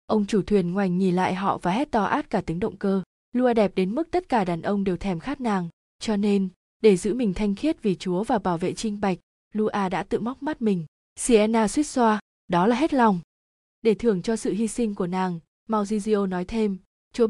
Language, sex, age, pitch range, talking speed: Vietnamese, female, 20-39, 190-235 Hz, 230 wpm